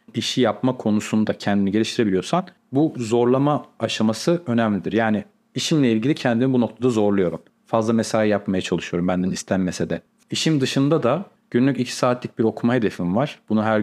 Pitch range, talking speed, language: 100-130 Hz, 150 wpm, Turkish